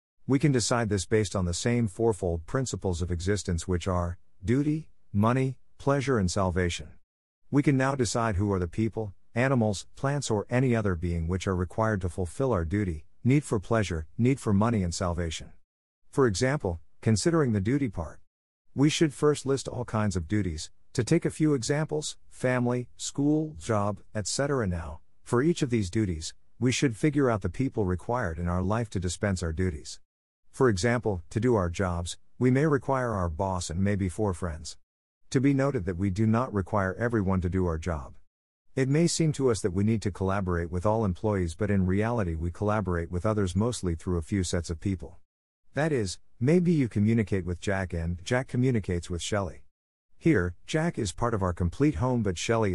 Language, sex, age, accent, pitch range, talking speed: English, male, 50-69, American, 90-125 Hz, 190 wpm